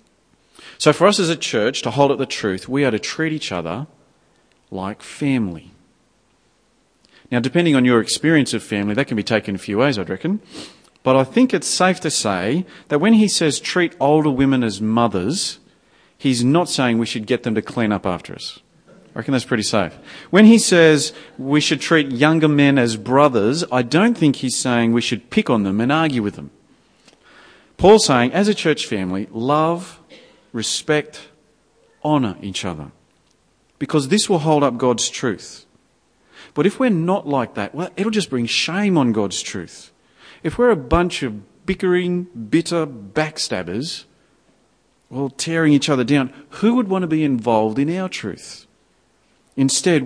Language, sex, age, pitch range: English, male, 40-59, 115-160 Hz